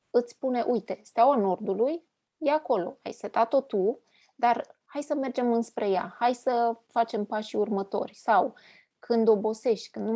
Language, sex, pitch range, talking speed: Romanian, female, 210-250 Hz, 155 wpm